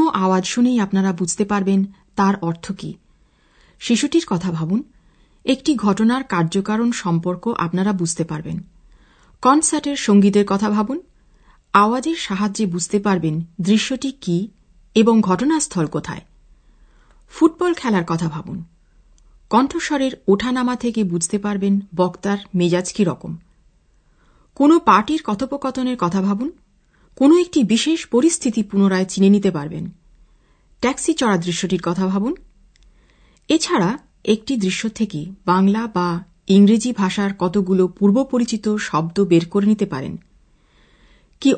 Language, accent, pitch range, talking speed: Bengali, native, 180-245 Hz, 110 wpm